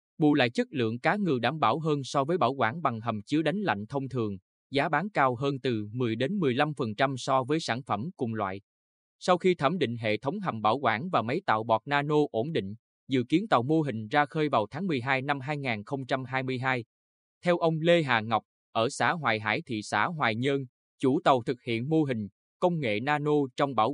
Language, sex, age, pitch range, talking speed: Vietnamese, male, 20-39, 110-150 Hz, 215 wpm